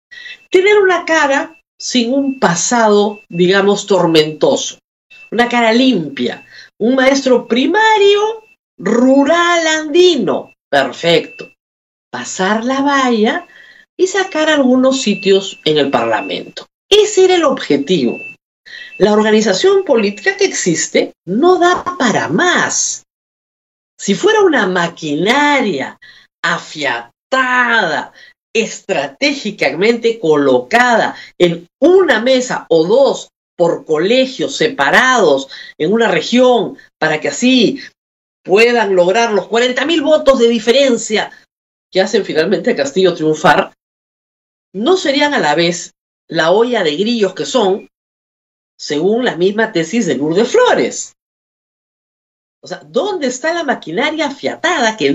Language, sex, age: Spanish, female, 50-69